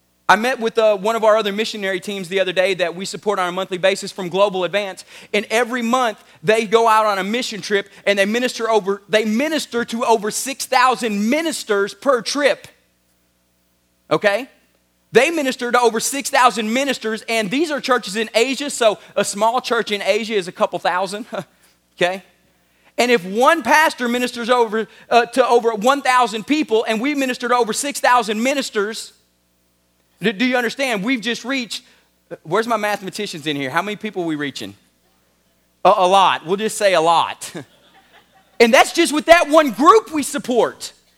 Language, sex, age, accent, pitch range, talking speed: English, male, 30-49, American, 200-275 Hz, 175 wpm